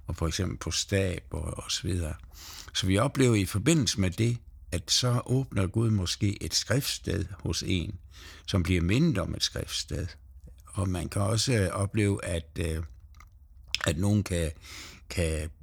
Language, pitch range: Danish, 85-105 Hz